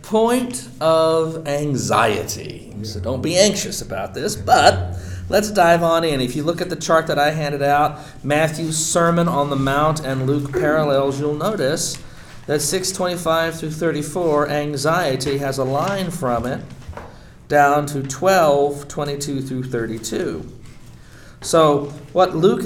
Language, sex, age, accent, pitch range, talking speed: English, male, 40-59, American, 115-160 Hz, 145 wpm